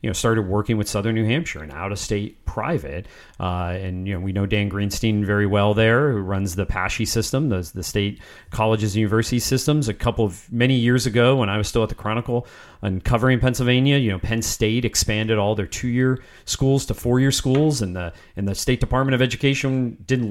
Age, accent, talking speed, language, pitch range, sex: 40-59, American, 210 wpm, English, 95-120 Hz, male